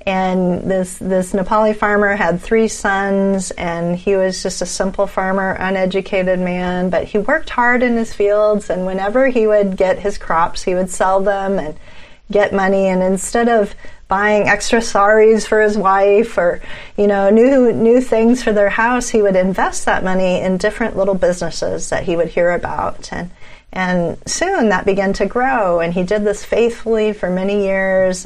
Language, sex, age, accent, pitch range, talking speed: English, female, 40-59, American, 185-220 Hz, 180 wpm